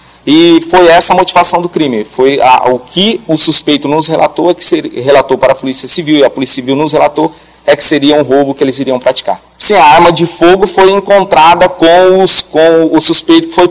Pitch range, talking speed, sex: 135-170 Hz, 230 wpm, male